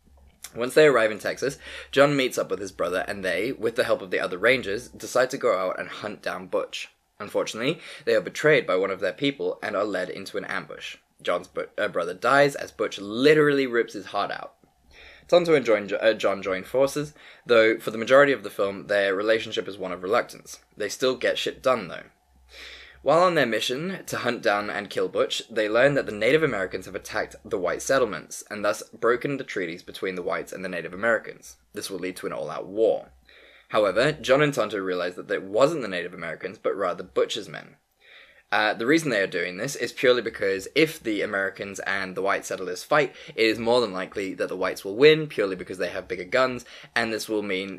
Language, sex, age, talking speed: English, male, 20-39, 215 wpm